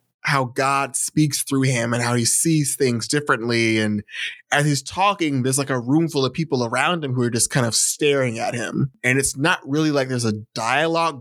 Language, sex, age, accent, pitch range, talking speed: English, male, 20-39, American, 125-160 Hz, 215 wpm